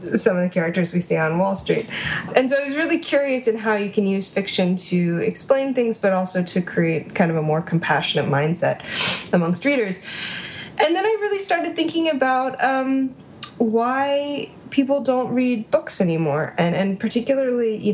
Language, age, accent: English, 10-29, American